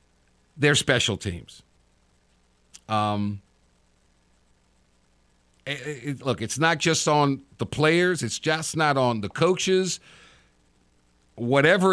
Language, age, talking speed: English, 50-69, 100 wpm